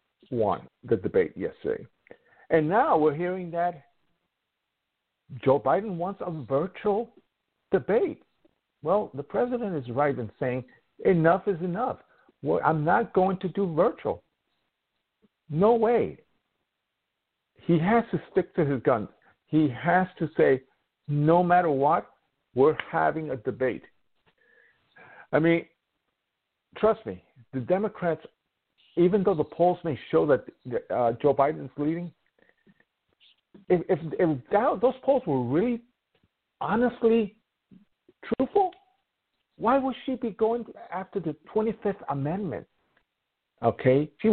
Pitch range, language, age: 150-220 Hz, English, 50-69